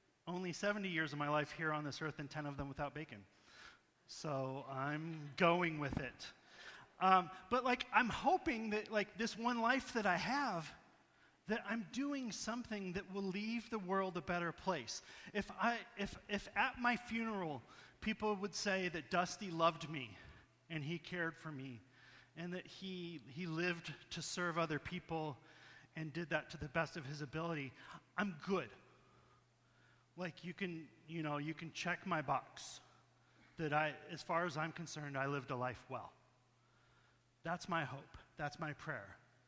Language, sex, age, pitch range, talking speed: English, male, 30-49, 140-185 Hz, 170 wpm